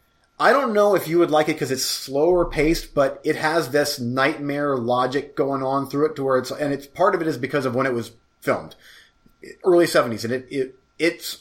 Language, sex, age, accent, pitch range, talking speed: English, male, 30-49, American, 125-165 Hz, 225 wpm